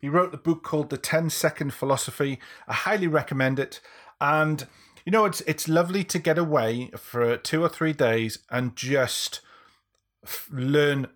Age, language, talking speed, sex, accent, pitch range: 40-59, English, 165 wpm, male, British, 120-145 Hz